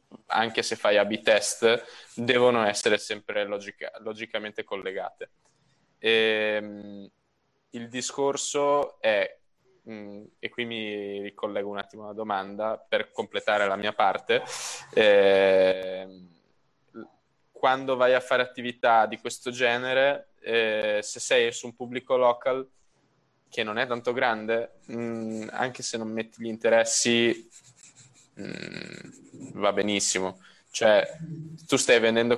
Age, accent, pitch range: 10-29, native, 105-130 Hz